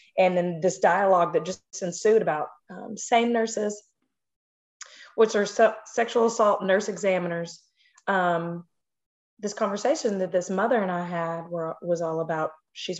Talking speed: 150 wpm